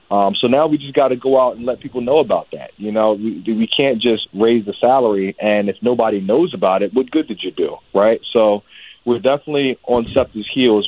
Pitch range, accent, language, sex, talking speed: 100-115 Hz, American, English, male, 230 wpm